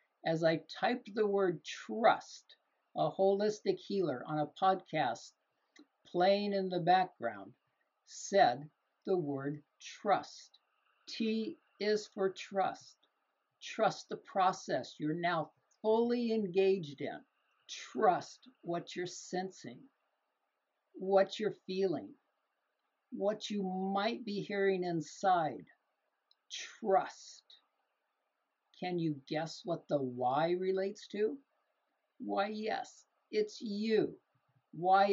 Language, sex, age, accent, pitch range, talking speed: English, male, 60-79, American, 165-205 Hz, 100 wpm